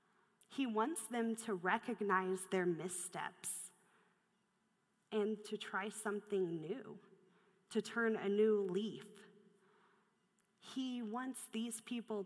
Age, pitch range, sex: 30-49, 185-215 Hz, female